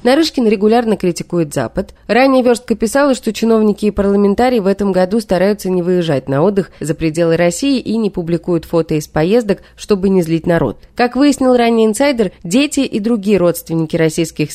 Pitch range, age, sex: 165-235 Hz, 30-49, female